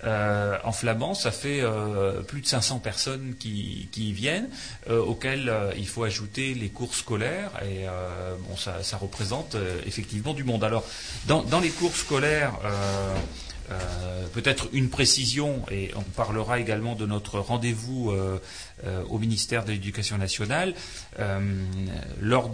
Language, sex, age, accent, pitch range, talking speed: French, male, 30-49, French, 100-125 Hz, 160 wpm